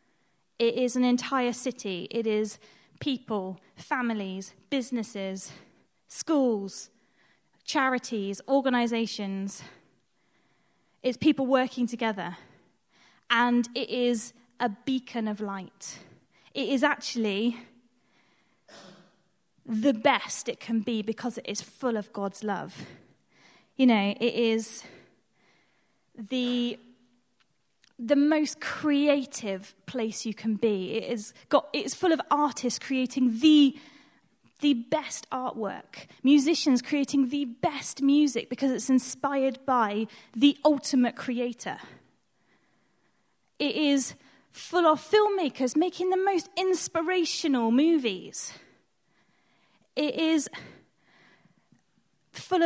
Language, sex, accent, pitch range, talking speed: English, female, British, 225-285 Hz, 100 wpm